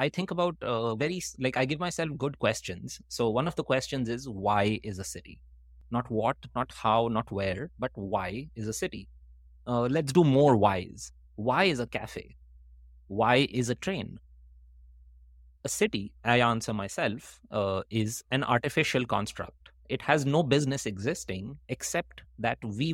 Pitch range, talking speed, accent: 100-130 Hz, 165 wpm, Indian